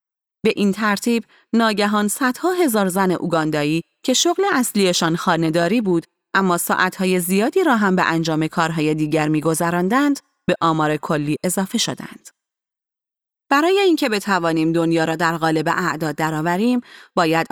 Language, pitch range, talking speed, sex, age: Persian, 170-250 Hz, 130 wpm, female, 30-49